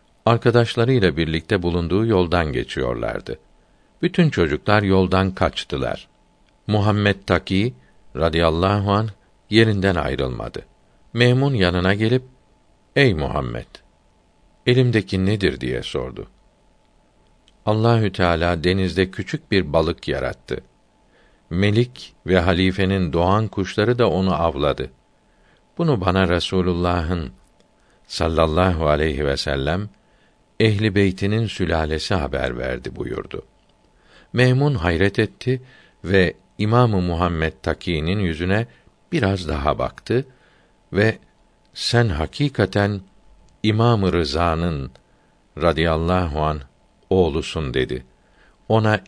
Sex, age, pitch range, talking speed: male, 60-79, 85-105 Hz, 90 wpm